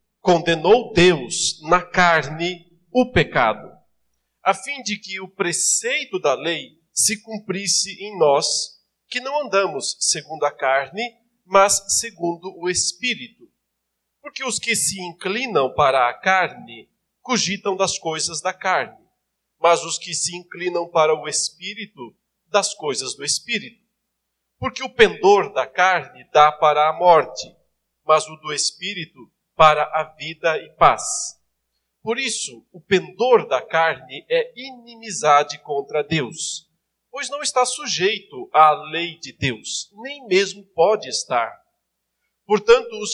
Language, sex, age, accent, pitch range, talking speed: Portuguese, male, 50-69, Brazilian, 160-225 Hz, 130 wpm